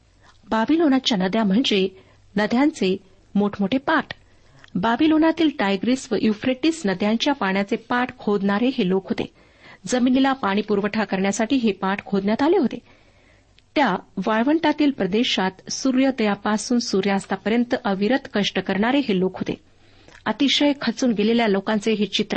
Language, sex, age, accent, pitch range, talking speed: Marathi, female, 50-69, native, 200-245 Hz, 115 wpm